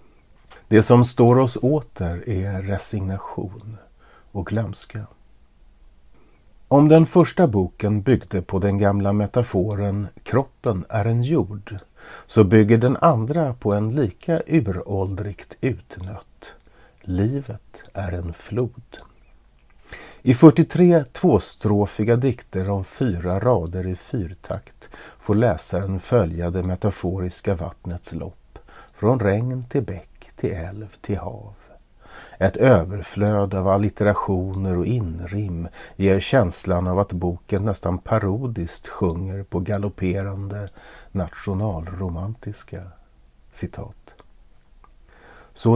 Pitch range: 90-115 Hz